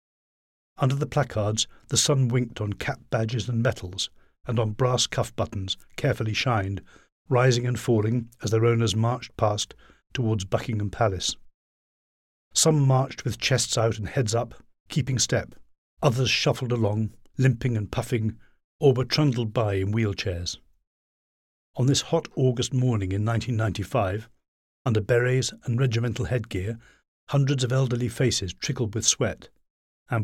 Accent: British